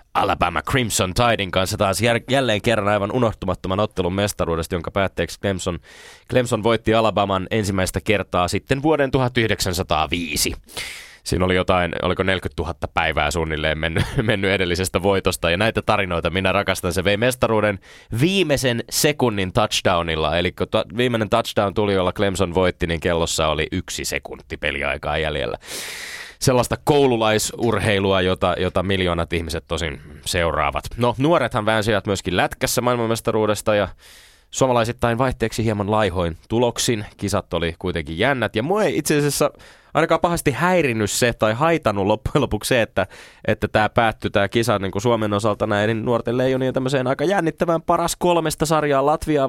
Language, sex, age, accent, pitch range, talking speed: Finnish, male, 20-39, native, 95-125 Hz, 145 wpm